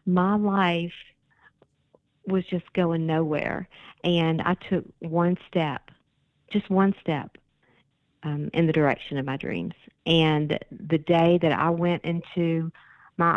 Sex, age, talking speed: female, 50-69, 120 wpm